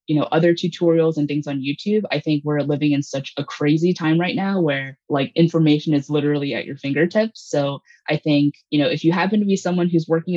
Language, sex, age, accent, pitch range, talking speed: English, female, 20-39, American, 145-175 Hz, 230 wpm